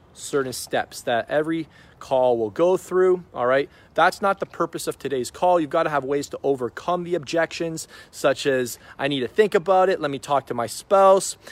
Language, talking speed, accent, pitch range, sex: English, 210 wpm, American, 135-185 Hz, male